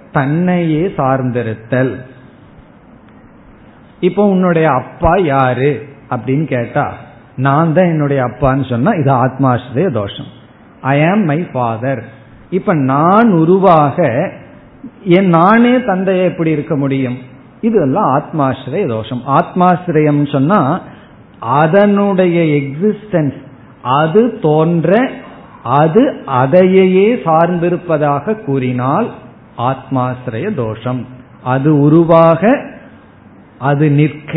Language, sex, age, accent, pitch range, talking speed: Tamil, male, 50-69, native, 130-180 Hz, 85 wpm